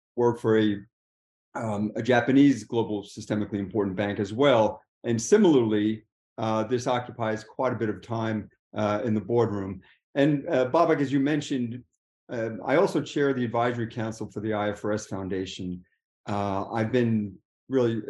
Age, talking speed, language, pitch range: 40-59, 160 wpm, English, 110-135 Hz